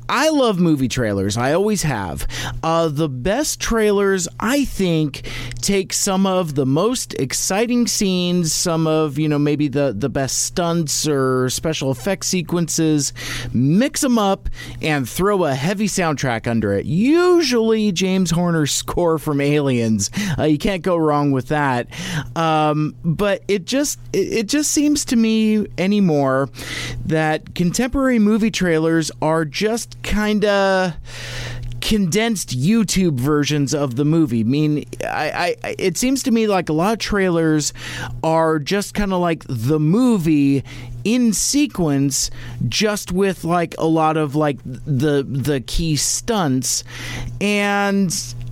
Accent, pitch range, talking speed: American, 130-190 Hz, 140 wpm